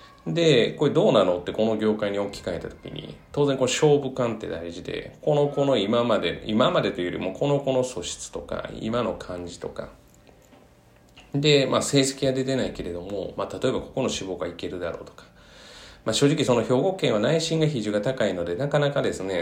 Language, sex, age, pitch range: Japanese, male, 30-49, 95-135 Hz